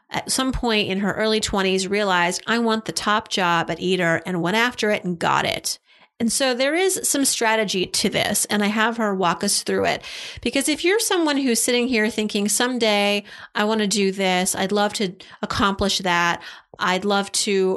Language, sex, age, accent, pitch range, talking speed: English, female, 30-49, American, 195-260 Hz, 200 wpm